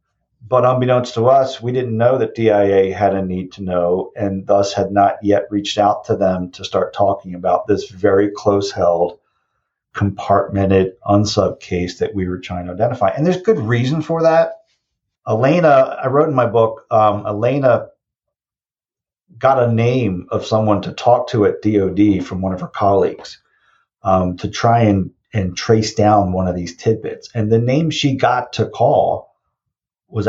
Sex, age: male, 40-59